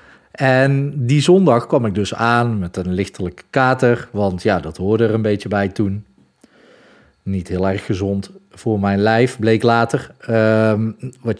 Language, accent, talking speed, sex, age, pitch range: Dutch, Dutch, 160 wpm, male, 40-59, 95-120 Hz